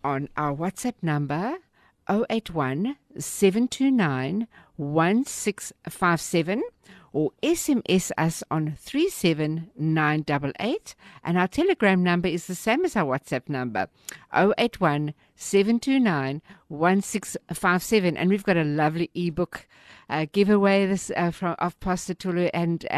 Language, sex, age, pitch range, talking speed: English, female, 50-69, 150-205 Hz, 105 wpm